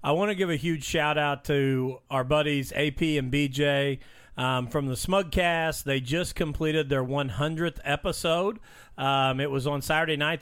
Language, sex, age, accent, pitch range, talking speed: English, male, 40-59, American, 135-160 Hz, 175 wpm